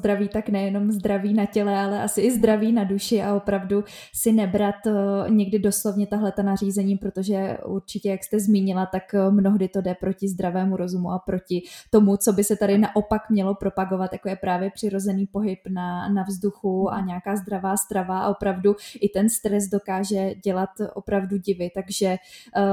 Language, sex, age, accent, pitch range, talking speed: Czech, female, 20-39, native, 185-205 Hz, 175 wpm